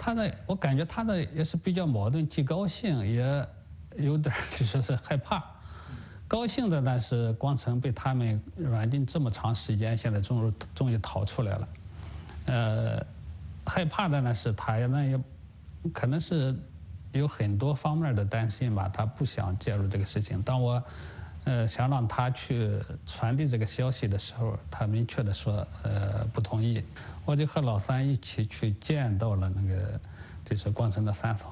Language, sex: English, male